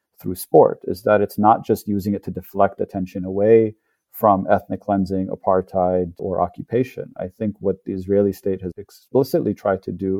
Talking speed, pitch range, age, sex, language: 175 wpm, 95-105 Hz, 40-59, male, English